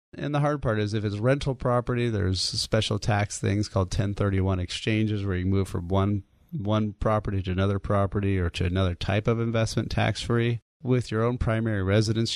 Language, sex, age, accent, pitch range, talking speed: English, male, 30-49, American, 95-115 Hz, 185 wpm